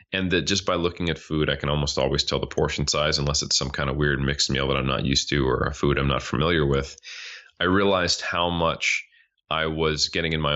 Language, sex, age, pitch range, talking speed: English, male, 30-49, 70-85 Hz, 250 wpm